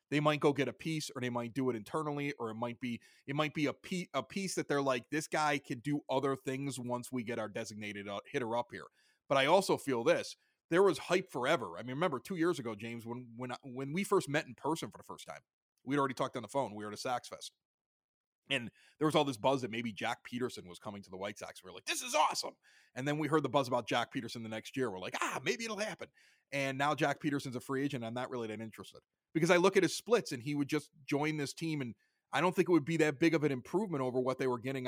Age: 30-49